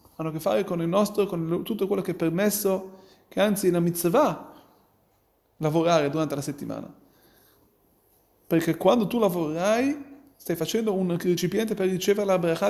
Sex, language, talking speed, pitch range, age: male, Italian, 160 wpm, 185-230 Hz, 30-49